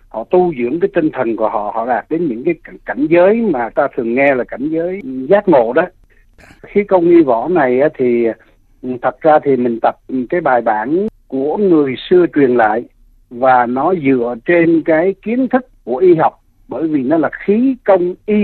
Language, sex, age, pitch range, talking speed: Vietnamese, male, 60-79, 130-220 Hz, 200 wpm